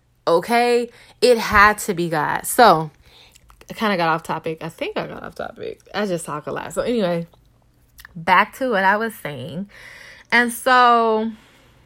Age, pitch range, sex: 10-29, 180-230 Hz, female